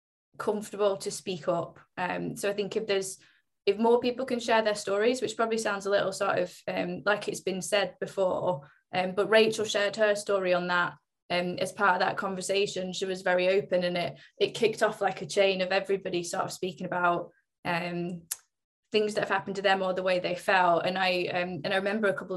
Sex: female